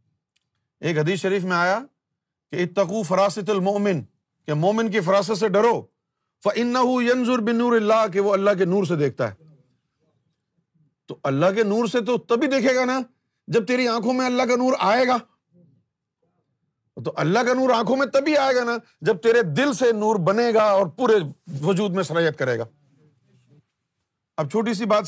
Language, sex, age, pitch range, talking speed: Urdu, male, 50-69, 150-220 Hz, 150 wpm